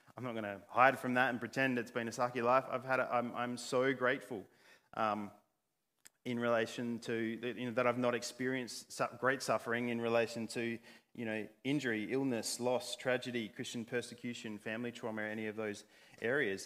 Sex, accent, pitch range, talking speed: male, Australian, 110-125 Hz, 185 wpm